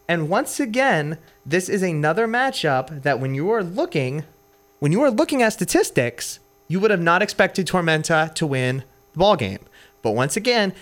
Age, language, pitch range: 30-49, English, 135-205 Hz